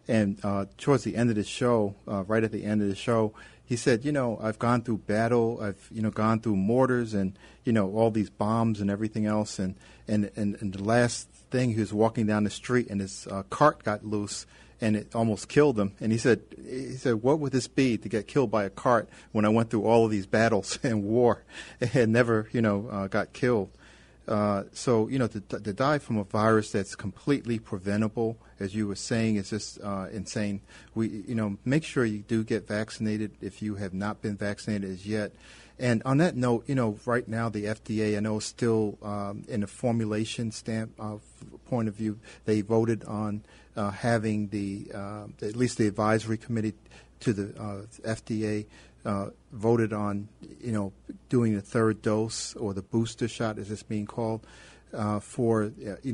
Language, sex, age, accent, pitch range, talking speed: English, male, 40-59, American, 105-115 Hz, 205 wpm